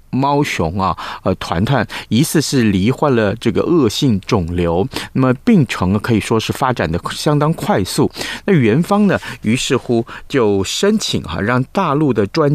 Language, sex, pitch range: Chinese, male, 100-140 Hz